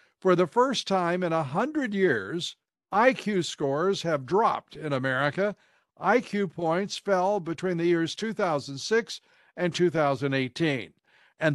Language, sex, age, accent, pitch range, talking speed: English, male, 60-79, American, 150-190 Hz, 125 wpm